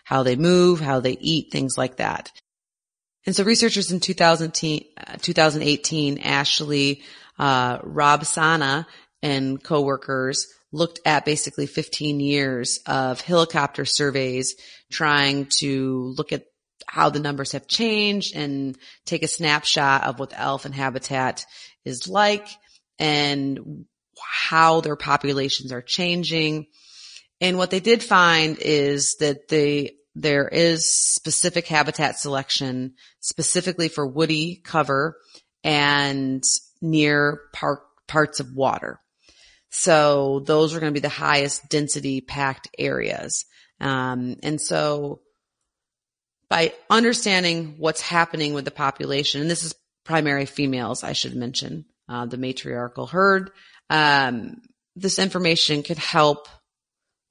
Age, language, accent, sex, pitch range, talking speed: 30-49, English, American, female, 140-165 Hz, 120 wpm